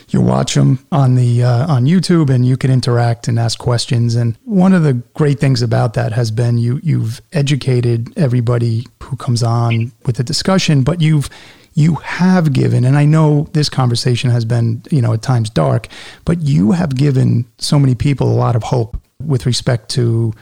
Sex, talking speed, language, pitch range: male, 190 wpm, English, 120-145 Hz